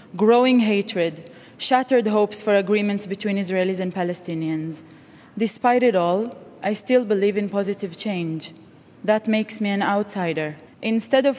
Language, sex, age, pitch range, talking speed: English, female, 20-39, 185-225 Hz, 135 wpm